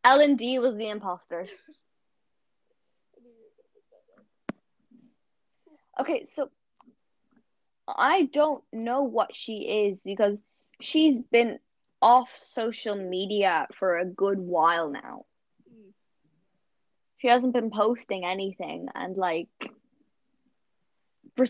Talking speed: 90 wpm